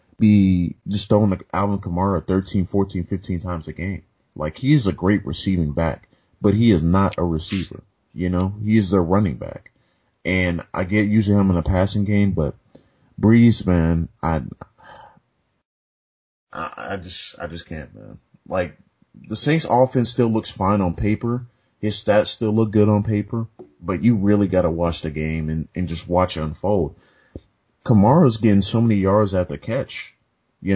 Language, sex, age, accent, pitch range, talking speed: English, male, 30-49, American, 85-110 Hz, 170 wpm